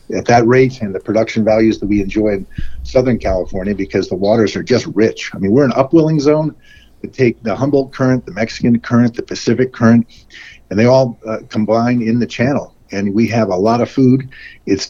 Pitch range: 105-120 Hz